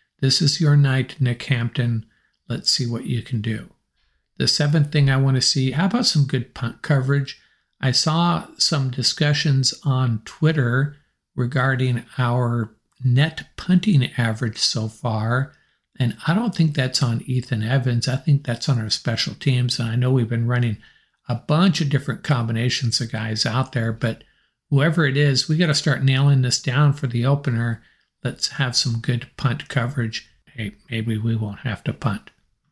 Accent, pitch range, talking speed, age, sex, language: American, 115-145 Hz, 170 wpm, 50-69, male, English